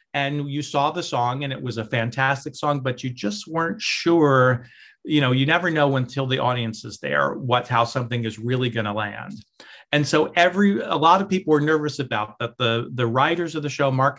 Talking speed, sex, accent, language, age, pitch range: 210 wpm, male, American, English, 40-59, 115-145 Hz